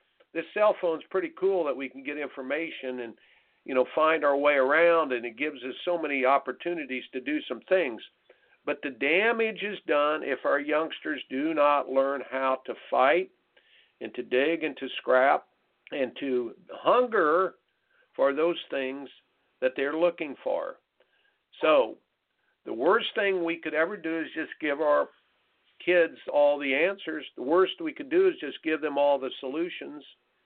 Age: 60-79